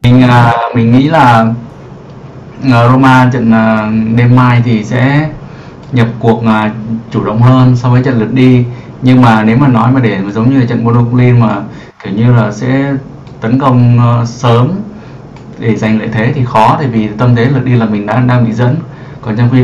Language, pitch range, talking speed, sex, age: Vietnamese, 115-130 Hz, 185 wpm, male, 20-39